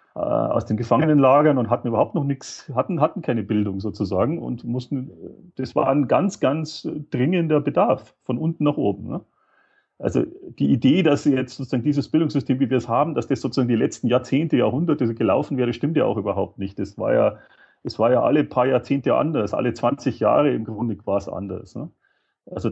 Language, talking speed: German, 190 wpm